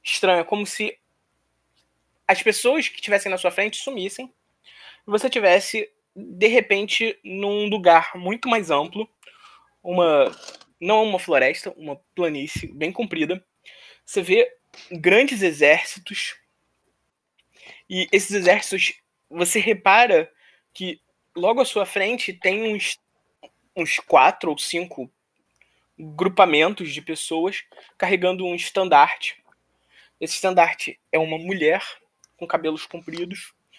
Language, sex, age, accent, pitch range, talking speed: Portuguese, male, 20-39, Brazilian, 170-215 Hz, 115 wpm